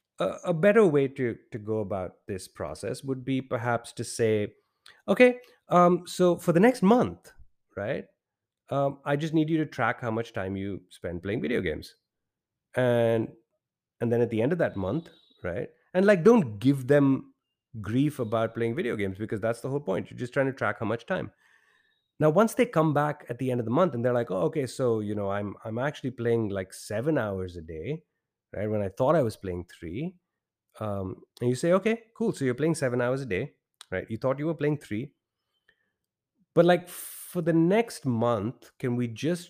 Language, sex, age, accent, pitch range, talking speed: English, male, 30-49, Indian, 115-170 Hz, 205 wpm